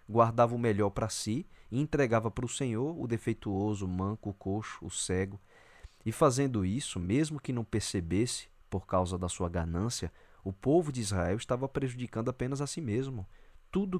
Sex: male